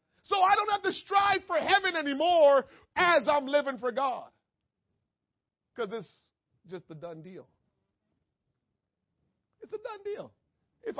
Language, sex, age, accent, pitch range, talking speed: English, male, 40-59, American, 175-265 Hz, 135 wpm